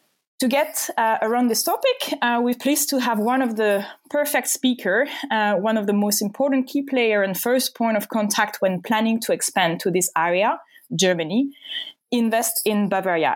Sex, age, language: female, 20-39, English